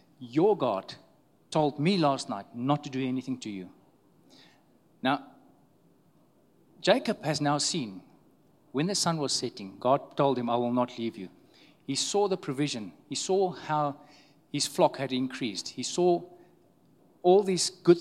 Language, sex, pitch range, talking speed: English, male, 130-175 Hz, 155 wpm